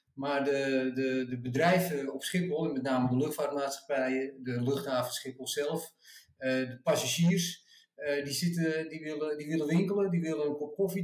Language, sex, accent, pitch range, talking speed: Dutch, male, Dutch, 130-170 Hz, 145 wpm